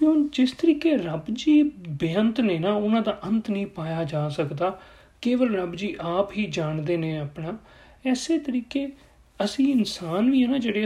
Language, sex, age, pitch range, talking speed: Punjabi, male, 40-59, 165-240 Hz, 165 wpm